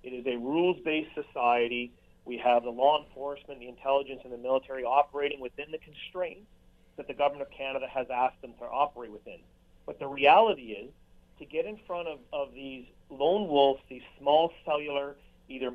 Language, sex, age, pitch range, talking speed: English, male, 40-59, 135-170 Hz, 180 wpm